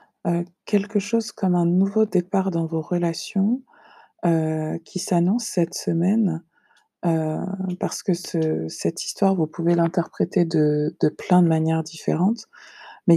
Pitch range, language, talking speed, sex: 165-200 Hz, French, 140 wpm, female